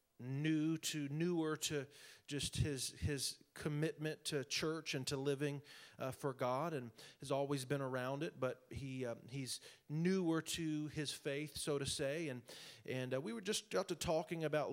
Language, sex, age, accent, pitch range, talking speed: English, male, 40-59, American, 140-165 Hz, 175 wpm